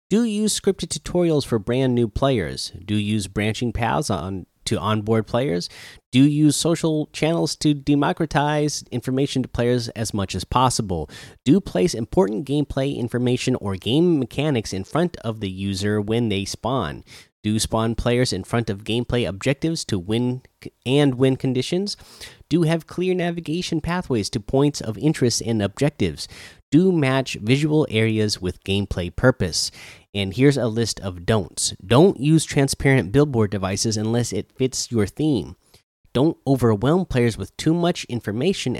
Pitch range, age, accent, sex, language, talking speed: 105-150 Hz, 30-49, American, male, English, 160 wpm